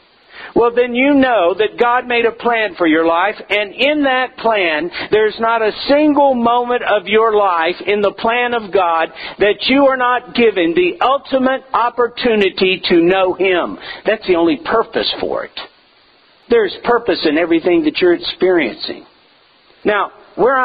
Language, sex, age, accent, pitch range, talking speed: English, male, 50-69, American, 205-280 Hz, 160 wpm